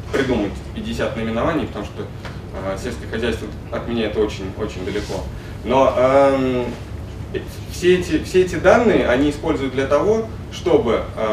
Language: Russian